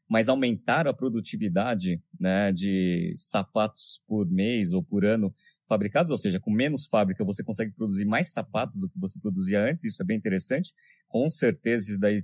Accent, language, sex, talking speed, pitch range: Brazilian, Portuguese, male, 175 wpm, 105-175 Hz